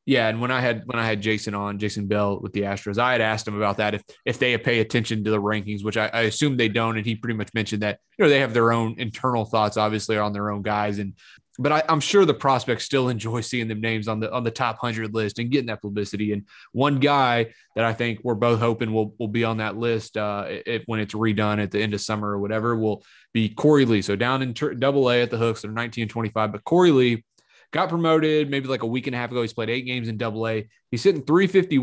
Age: 20-39